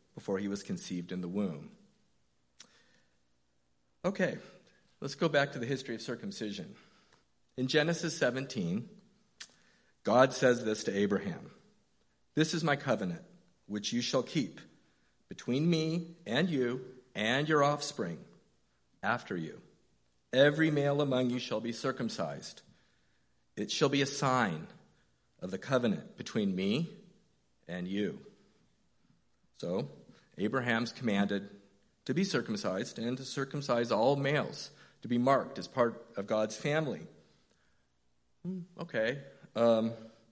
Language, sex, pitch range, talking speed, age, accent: English, male, 110-165 Hz, 120 wpm, 50-69, American